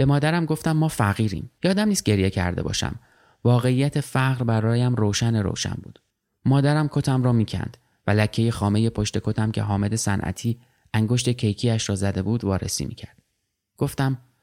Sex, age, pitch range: male, 30-49, 105-130 Hz